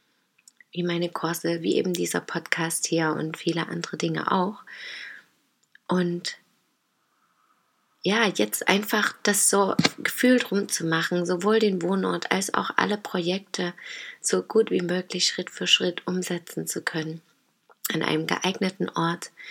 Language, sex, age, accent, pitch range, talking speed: German, female, 30-49, German, 160-185 Hz, 130 wpm